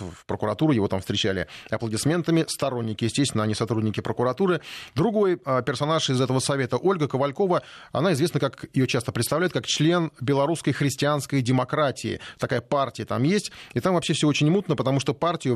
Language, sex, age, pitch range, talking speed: Russian, male, 30-49, 125-155 Hz, 160 wpm